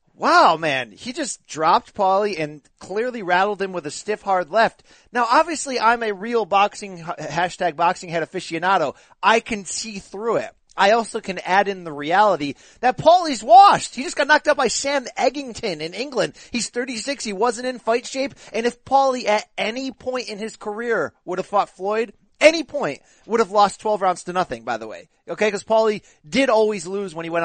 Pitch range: 180-230 Hz